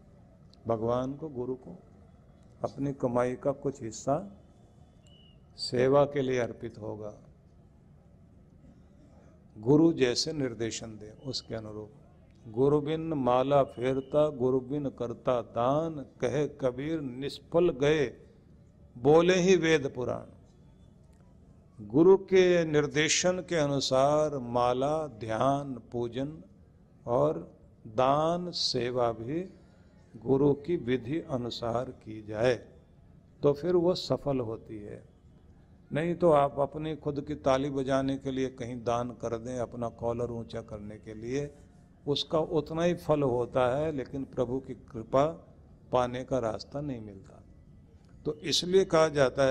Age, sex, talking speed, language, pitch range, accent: 50-69, male, 120 wpm, Hindi, 120-150 Hz, native